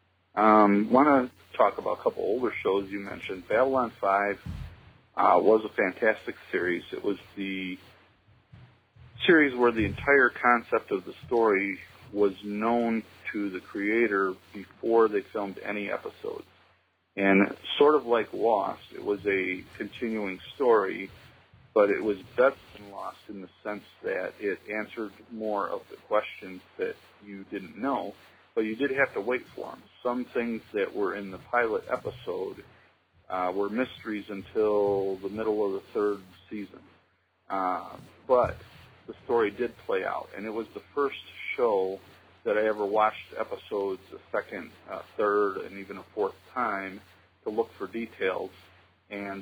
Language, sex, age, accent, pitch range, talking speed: English, male, 40-59, American, 95-125 Hz, 155 wpm